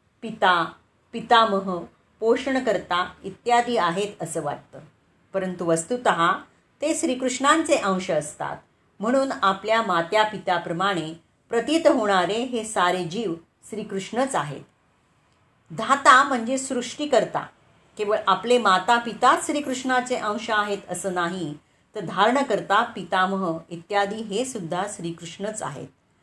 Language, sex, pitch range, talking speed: Marathi, female, 190-250 Hz, 100 wpm